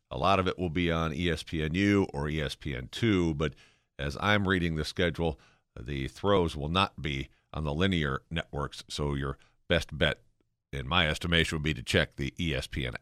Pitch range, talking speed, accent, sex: 75-100 Hz, 175 wpm, American, male